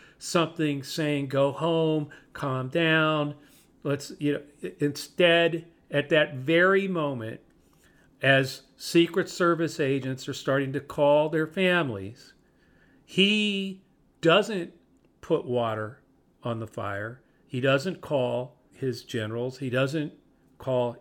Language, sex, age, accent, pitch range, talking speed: English, male, 50-69, American, 125-155 Hz, 110 wpm